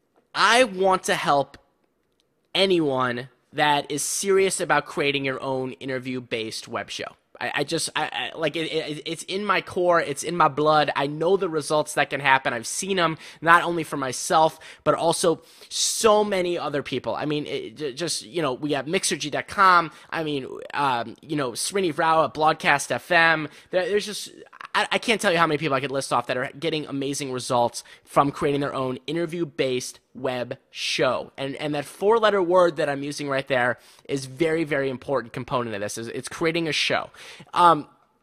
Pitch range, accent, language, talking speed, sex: 135-180 Hz, American, English, 185 wpm, male